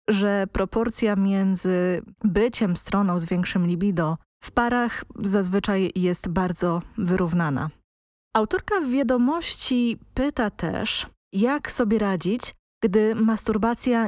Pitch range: 185-230 Hz